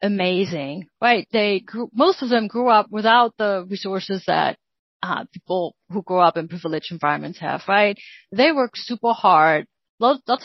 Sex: female